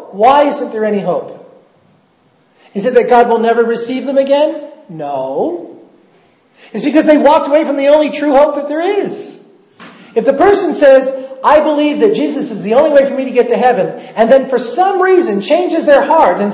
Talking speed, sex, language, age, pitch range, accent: 200 wpm, male, English, 40-59, 225-305 Hz, American